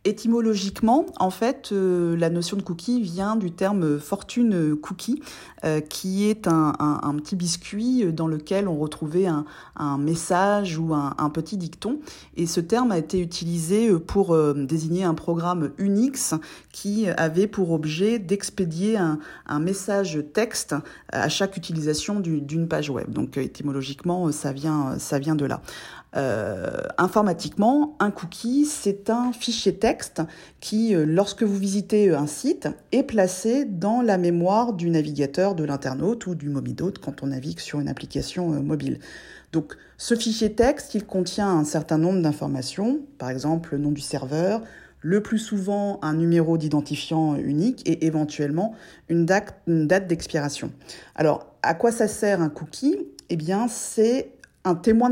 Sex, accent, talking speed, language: female, French, 150 wpm, French